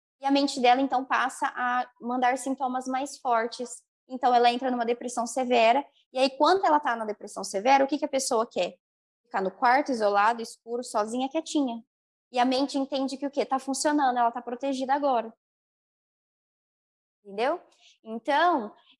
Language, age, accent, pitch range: Portuguese, 20-39, Brazilian, 240-300 Hz